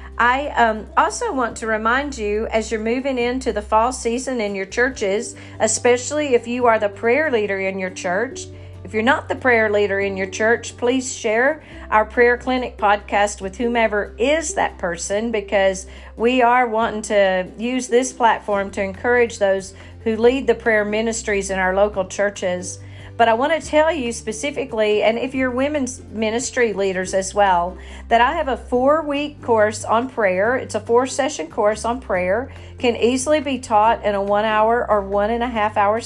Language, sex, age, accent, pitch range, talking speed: English, female, 40-59, American, 200-245 Hz, 175 wpm